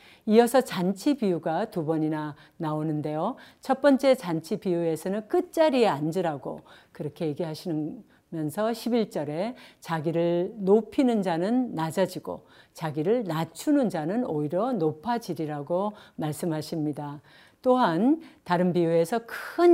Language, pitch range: Korean, 165-245 Hz